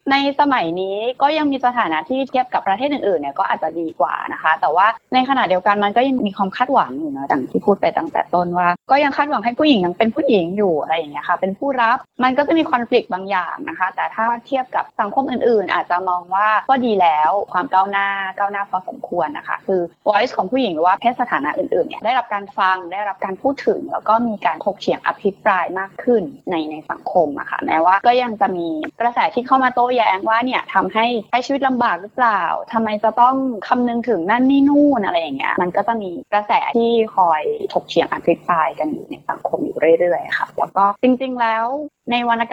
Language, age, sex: Thai, 20-39, female